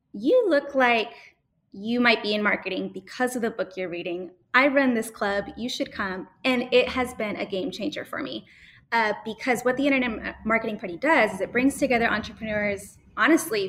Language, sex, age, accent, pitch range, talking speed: English, female, 20-39, American, 200-250 Hz, 195 wpm